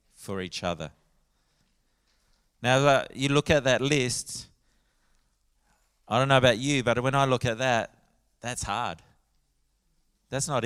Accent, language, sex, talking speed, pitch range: Australian, English, male, 135 wpm, 115-135 Hz